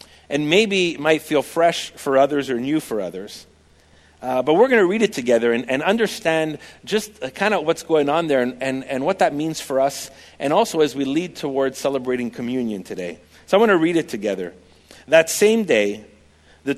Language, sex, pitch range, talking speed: English, male, 120-170 Hz, 205 wpm